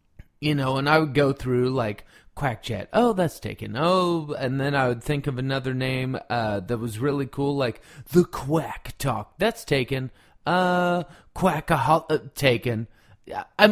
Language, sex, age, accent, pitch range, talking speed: English, male, 30-49, American, 130-175 Hz, 170 wpm